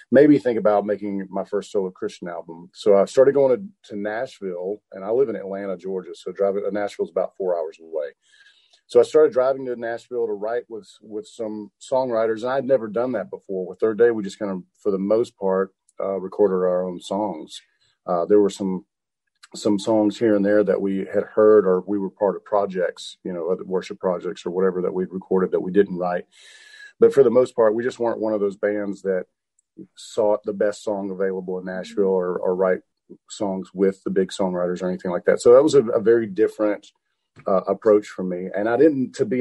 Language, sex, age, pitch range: English, male, 40-59, 95-125 Hz